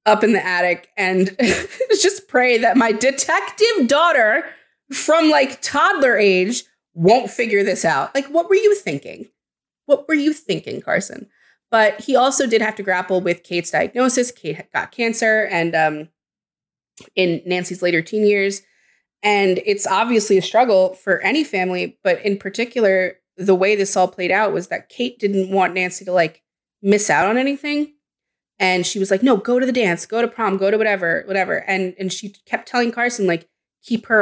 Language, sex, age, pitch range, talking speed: English, female, 20-39, 185-245 Hz, 180 wpm